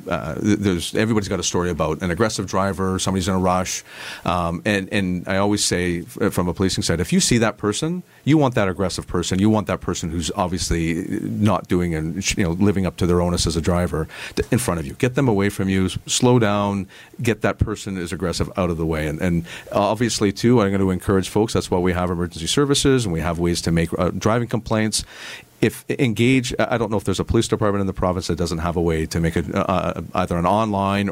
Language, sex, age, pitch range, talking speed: English, male, 40-59, 90-105 Hz, 235 wpm